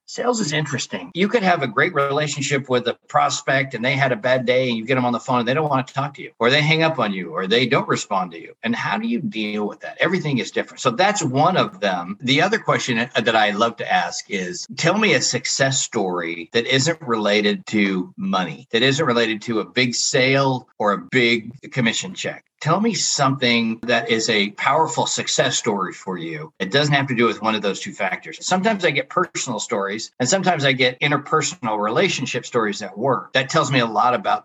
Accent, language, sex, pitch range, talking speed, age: American, English, male, 110-150 Hz, 230 wpm, 50-69